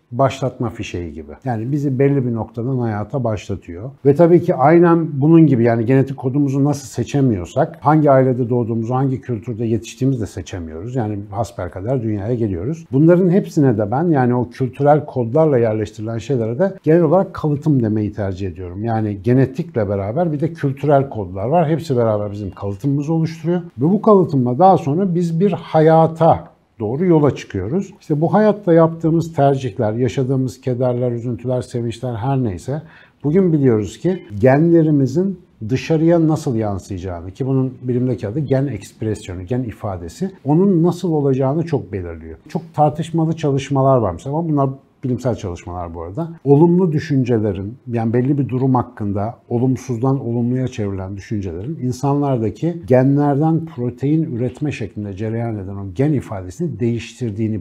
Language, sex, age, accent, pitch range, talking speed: Turkish, male, 60-79, native, 115-155 Hz, 145 wpm